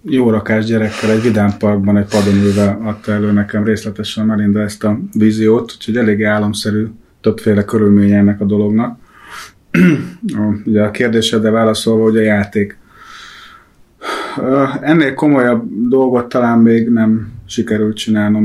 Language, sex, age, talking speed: Hungarian, male, 30-49, 115 wpm